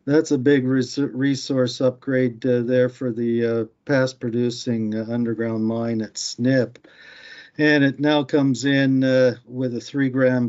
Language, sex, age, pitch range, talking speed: English, male, 50-69, 115-130 Hz, 145 wpm